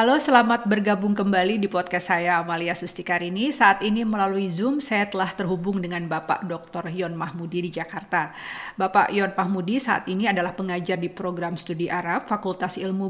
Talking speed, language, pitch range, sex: 165 wpm, Indonesian, 180-205 Hz, female